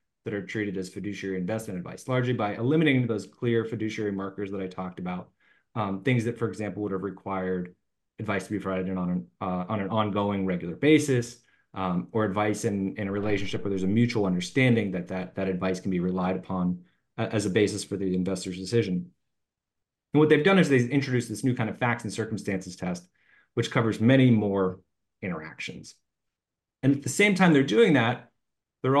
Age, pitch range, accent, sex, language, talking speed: 30-49, 95-125 Hz, American, male, English, 190 wpm